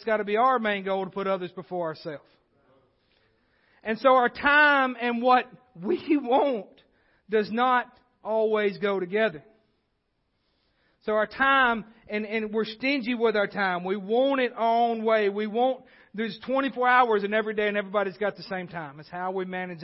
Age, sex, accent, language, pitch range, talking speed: 40-59, male, American, English, 160-210 Hz, 180 wpm